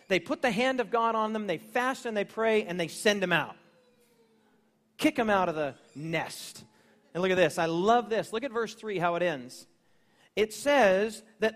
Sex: male